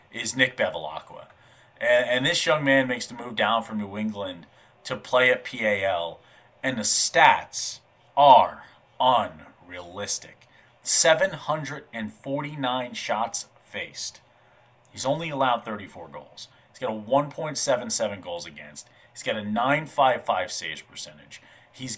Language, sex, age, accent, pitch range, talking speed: English, male, 30-49, American, 110-140 Hz, 120 wpm